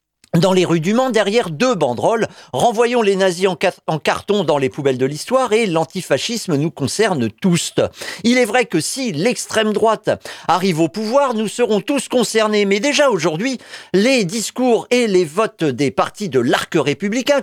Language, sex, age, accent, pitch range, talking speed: French, male, 50-69, French, 150-205 Hz, 175 wpm